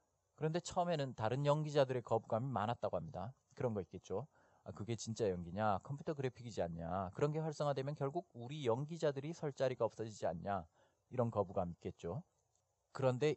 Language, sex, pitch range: Korean, male, 110-155 Hz